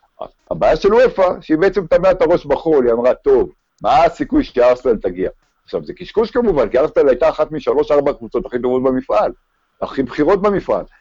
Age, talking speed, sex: 60-79, 175 wpm, male